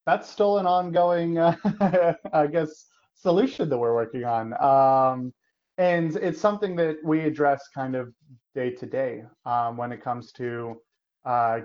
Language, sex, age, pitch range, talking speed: English, male, 20-39, 115-140 Hz, 155 wpm